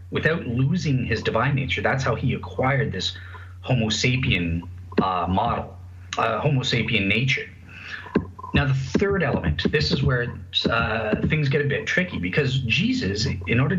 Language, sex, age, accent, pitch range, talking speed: English, male, 30-49, American, 95-135 Hz, 150 wpm